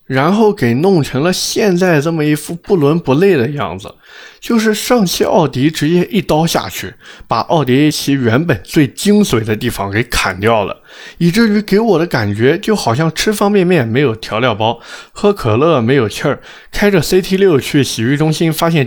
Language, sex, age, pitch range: Chinese, male, 20-39, 120-175 Hz